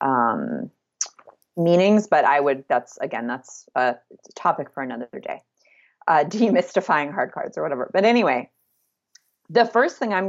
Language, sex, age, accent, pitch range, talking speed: English, female, 30-49, American, 160-215 Hz, 150 wpm